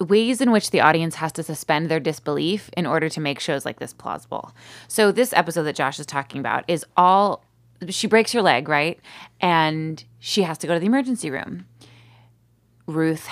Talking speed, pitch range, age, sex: 195 wpm, 150-205 Hz, 20-39, female